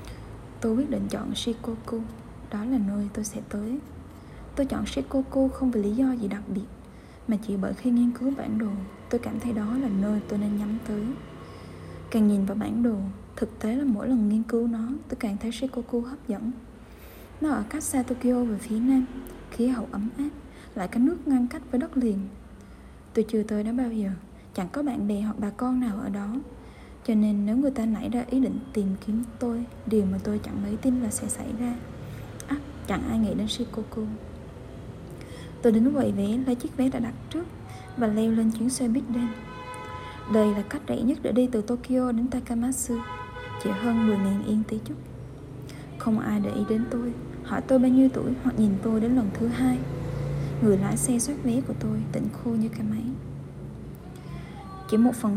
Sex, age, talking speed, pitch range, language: female, 10-29, 205 wpm, 210-250 Hz, Vietnamese